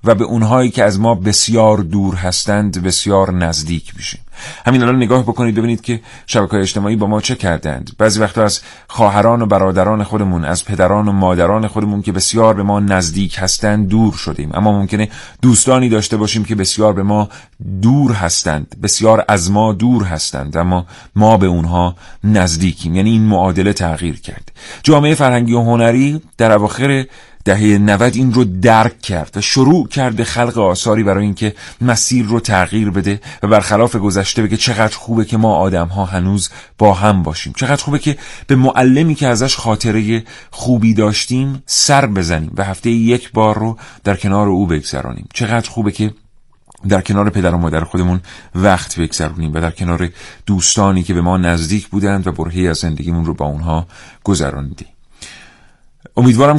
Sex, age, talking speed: male, 40-59, 170 wpm